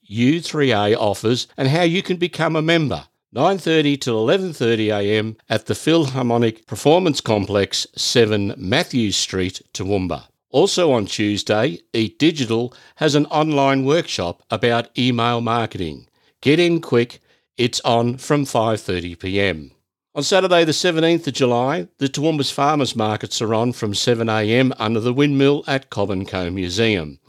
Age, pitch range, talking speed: 50-69, 105-140 Hz, 130 wpm